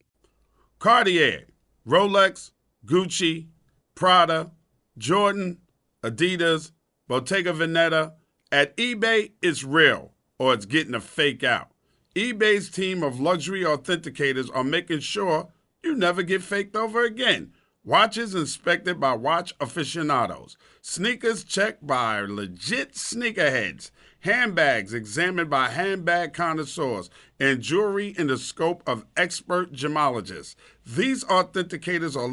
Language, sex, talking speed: English, male, 110 wpm